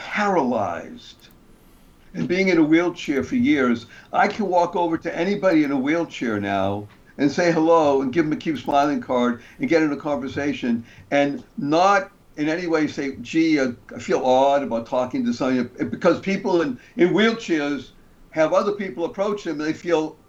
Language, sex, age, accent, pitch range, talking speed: English, male, 60-79, American, 145-210 Hz, 175 wpm